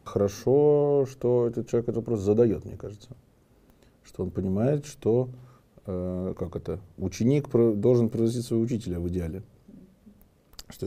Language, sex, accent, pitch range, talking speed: Russian, male, native, 100-125 Hz, 130 wpm